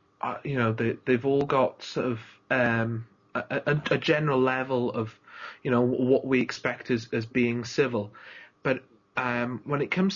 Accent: British